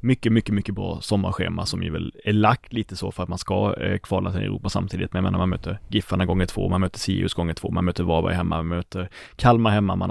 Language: Swedish